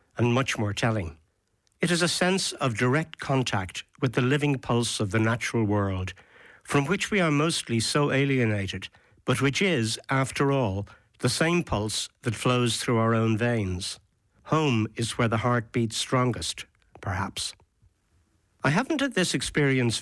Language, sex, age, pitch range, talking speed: English, male, 60-79, 105-135 Hz, 160 wpm